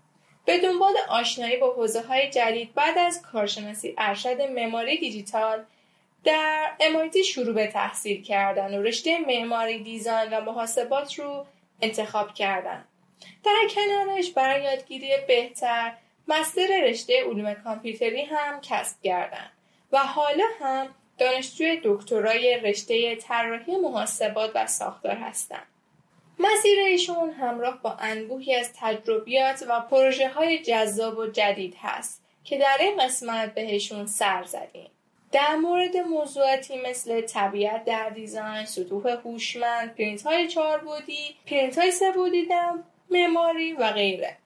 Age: 10-29